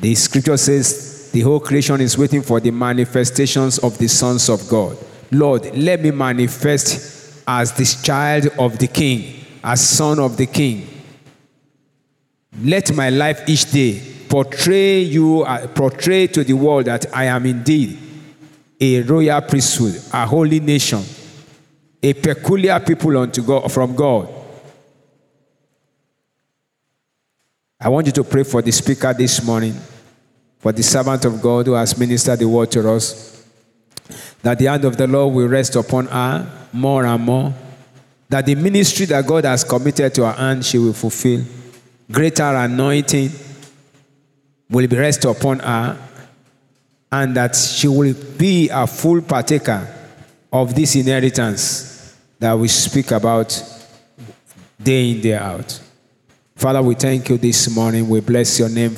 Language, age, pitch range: English, 50-69, 120-145 Hz